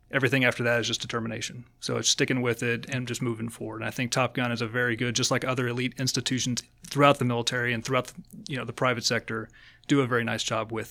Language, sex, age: English, male, 30-49